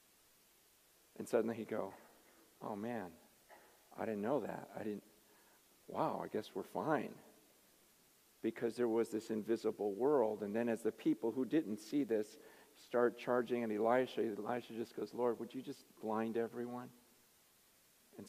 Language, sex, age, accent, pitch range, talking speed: English, male, 50-69, American, 115-150 Hz, 150 wpm